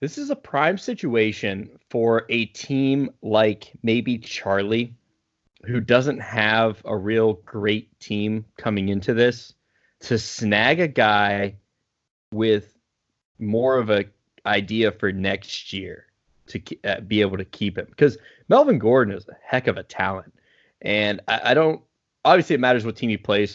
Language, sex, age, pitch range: English, male, 20-39, 105-120 Hz